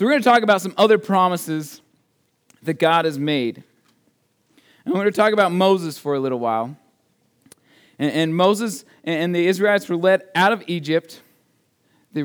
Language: English